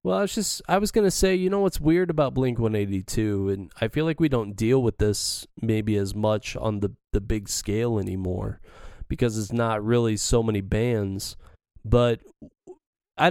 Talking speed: 190 wpm